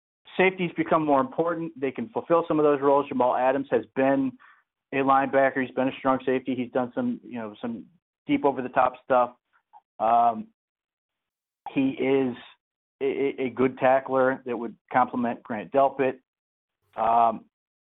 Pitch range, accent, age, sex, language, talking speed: 130-150 Hz, American, 40-59, male, English, 155 wpm